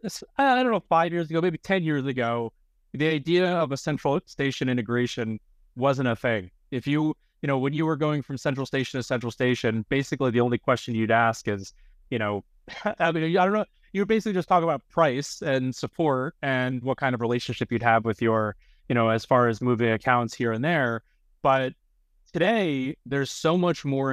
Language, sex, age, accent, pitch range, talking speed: English, male, 20-39, American, 115-140 Hz, 200 wpm